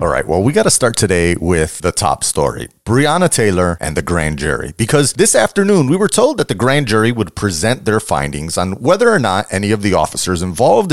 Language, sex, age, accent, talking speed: English, male, 30-49, American, 225 wpm